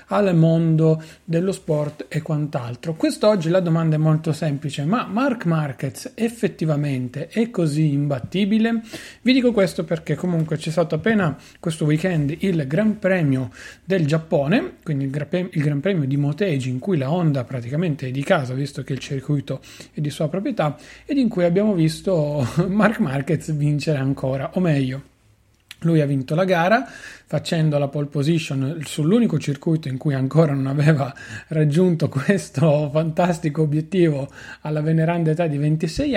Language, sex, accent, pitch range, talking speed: Italian, male, native, 145-180 Hz, 155 wpm